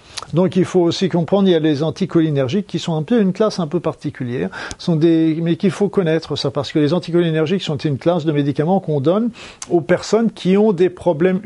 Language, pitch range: French, 135-175 Hz